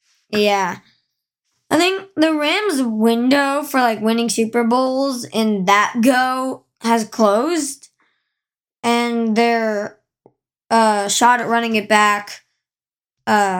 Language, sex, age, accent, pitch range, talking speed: English, male, 20-39, American, 225-270 Hz, 110 wpm